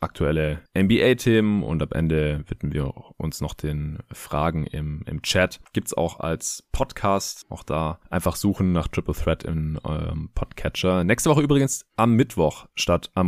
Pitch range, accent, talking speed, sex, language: 80-100 Hz, German, 160 wpm, male, German